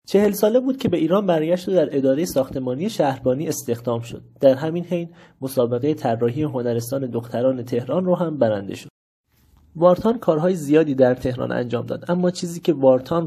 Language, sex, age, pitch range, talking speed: Persian, male, 30-49, 120-150 Hz, 165 wpm